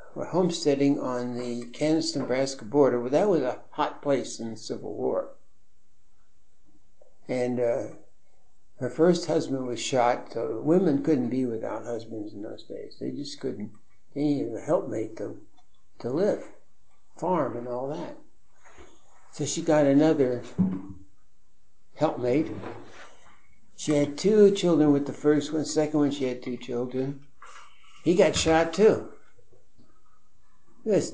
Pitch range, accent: 120-155 Hz, American